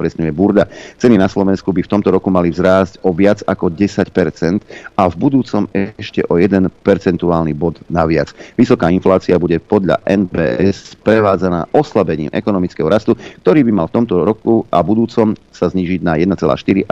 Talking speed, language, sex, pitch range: 165 wpm, Slovak, male, 85-100 Hz